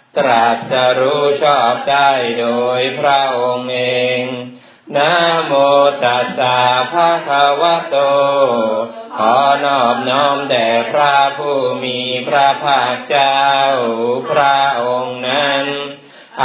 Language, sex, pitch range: Thai, male, 125-140 Hz